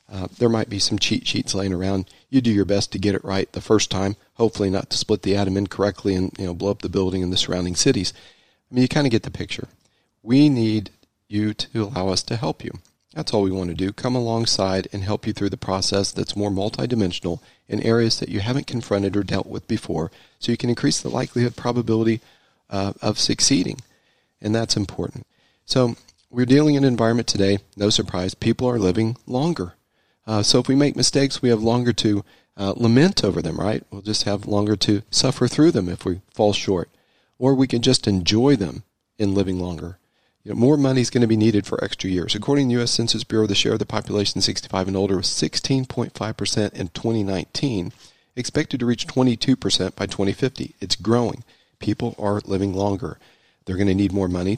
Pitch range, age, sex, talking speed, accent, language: 95-120 Hz, 40-59, male, 210 wpm, American, English